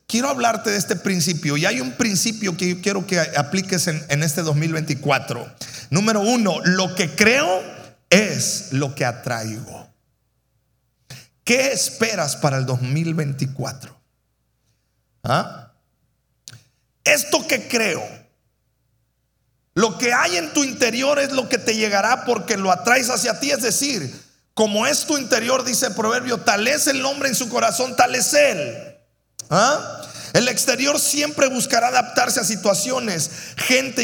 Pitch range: 180-265 Hz